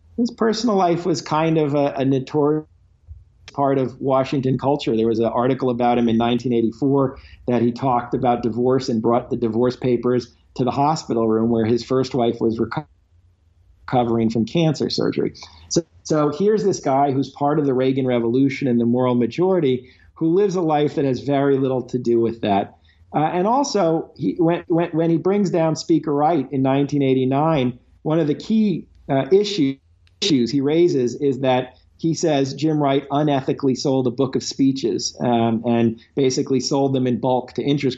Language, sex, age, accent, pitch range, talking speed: English, male, 40-59, American, 120-155 Hz, 185 wpm